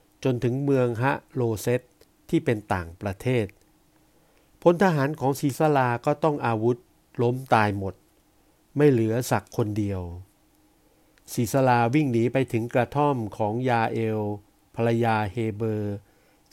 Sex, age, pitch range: male, 60-79, 105-135 Hz